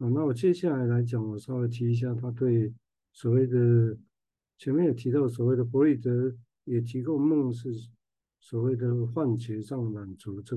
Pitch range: 110-130 Hz